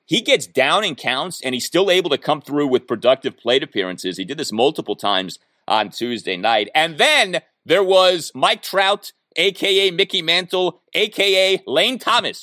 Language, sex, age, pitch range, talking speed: English, male, 30-49, 120-195 Hz, 175 wpm